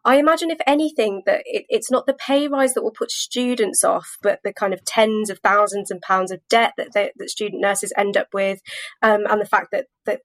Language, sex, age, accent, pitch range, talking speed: English, female, 20-39, British, 200-245 Hz, 230 wpm